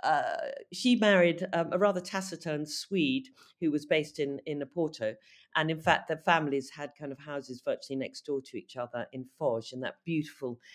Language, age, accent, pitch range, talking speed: English, 50-69, British, 125-165 Hz, 190 wpm